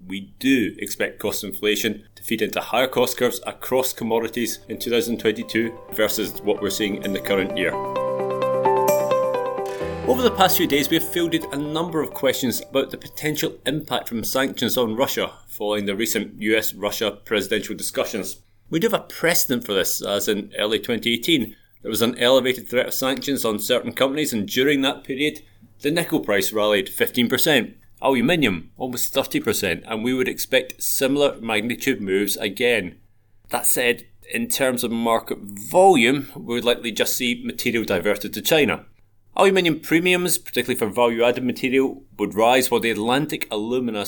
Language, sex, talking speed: English, male, 160 wpm